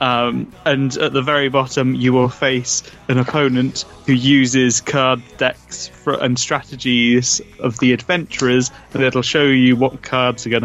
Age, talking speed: 20-39, 165 wpm